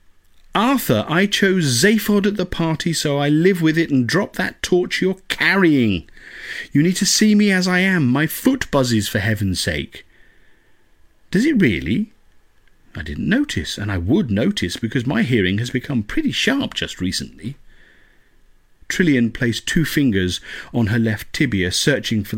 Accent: British